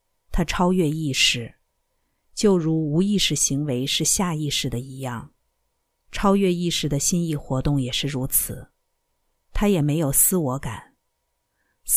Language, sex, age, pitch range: Chinese, female, 50-69, 140-185 Hz